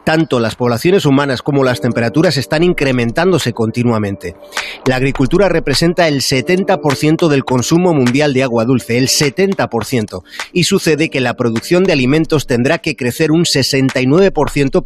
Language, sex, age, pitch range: Spanish, male, 30-49, 115-150 Hz